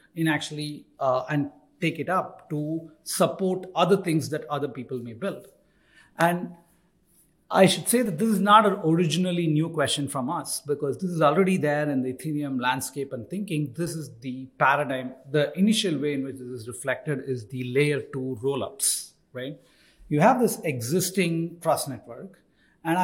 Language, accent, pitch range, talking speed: English, Indian, 130-175 Hz, 170 wpm